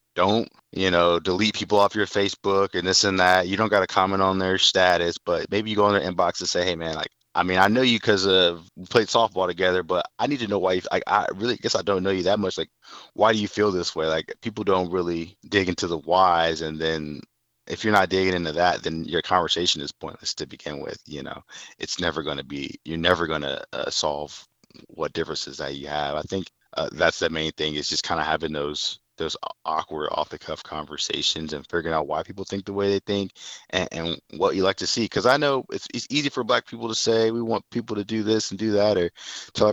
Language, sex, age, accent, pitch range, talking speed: English, male, 30-49, American, 85-100 Hz, 245 wpm